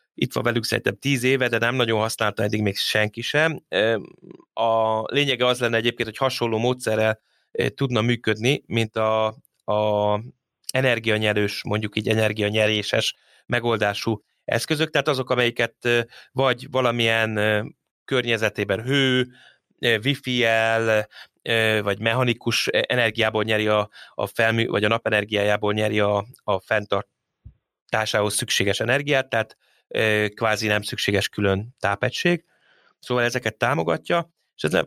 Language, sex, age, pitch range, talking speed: Hungarian, male, 20-39, 105-130 Hz, 120 wpm